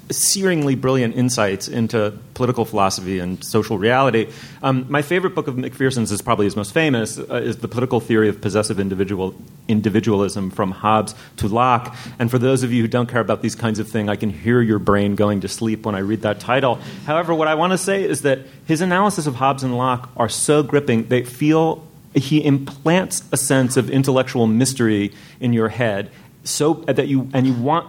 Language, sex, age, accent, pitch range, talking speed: English, male, 30-49, American, 115-155 Hz, 200 wpm